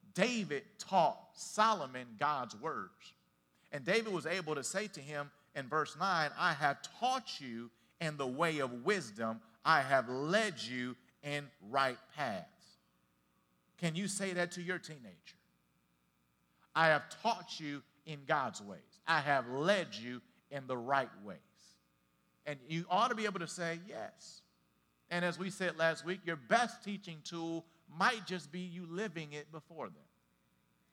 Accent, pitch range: American, 135-185 Hz